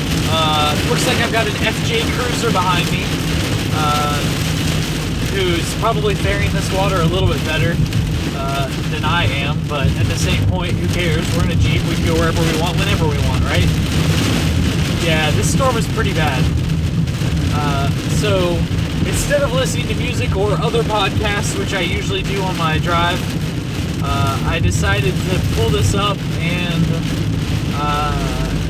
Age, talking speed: 20-39, 160 wpm